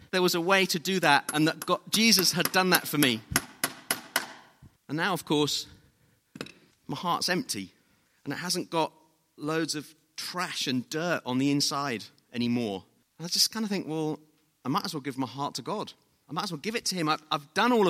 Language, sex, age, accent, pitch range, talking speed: English, male, 30-49, British, 135-180 Hz, 215 wpm